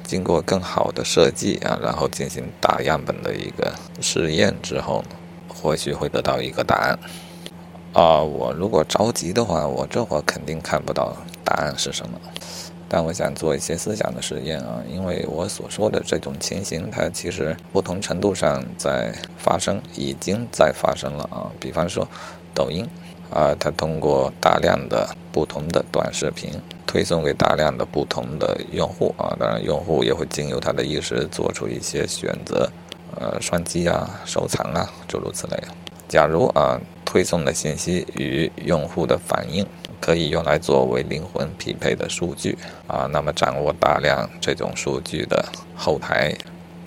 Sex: male